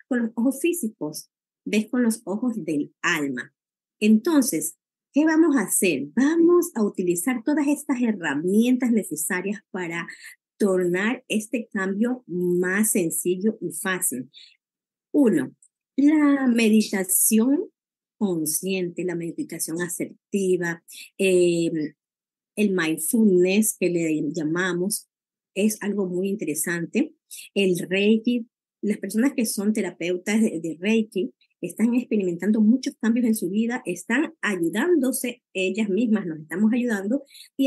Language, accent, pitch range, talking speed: Spanish, American, 180-235 Hz, 115 wpm